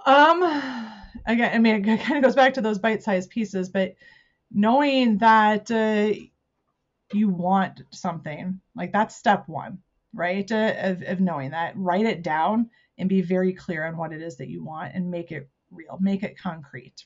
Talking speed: 180 wpm